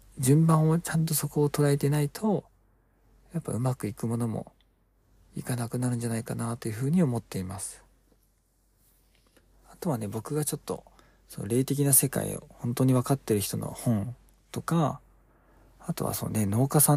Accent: native